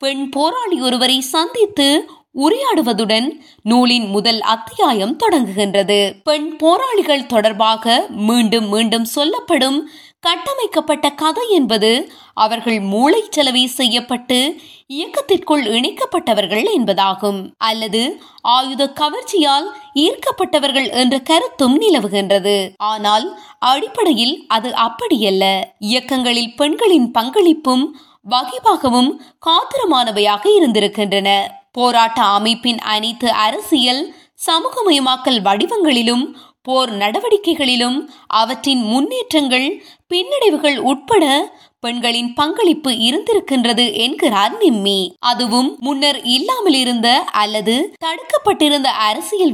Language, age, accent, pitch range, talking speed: Tamil, 20-39, native, 230-325 Hz, 55 wpm